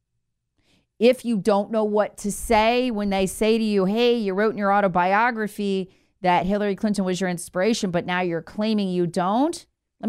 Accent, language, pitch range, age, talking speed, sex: American, English, 160-230 Hz, 40-59, 185 wpm, female